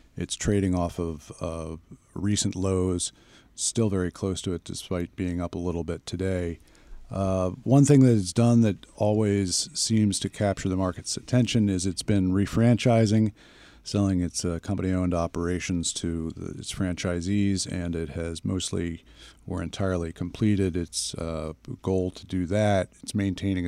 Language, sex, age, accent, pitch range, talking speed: English, male, 40-59, American, 90-105 Hz, 155 wpm